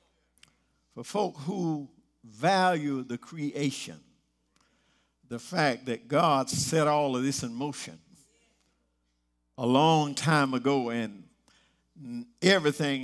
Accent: American